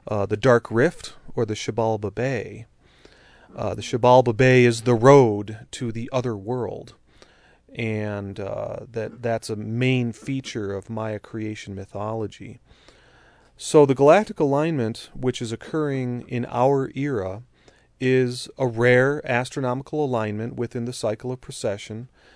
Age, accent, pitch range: 30-49, American, 110-130 Hz